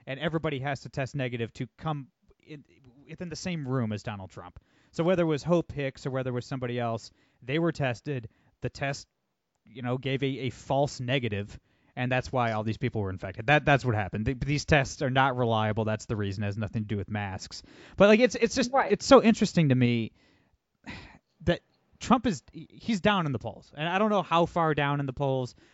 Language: English